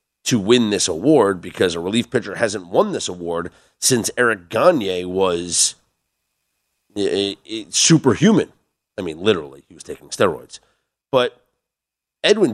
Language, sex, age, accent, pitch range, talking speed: English, male, 40-59, American, 115-195 Hz, 140 wpm